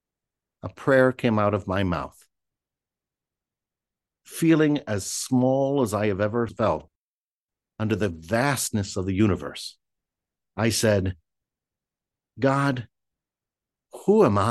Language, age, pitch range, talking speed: English, 50-69, 95-115 Hz, 110 wpm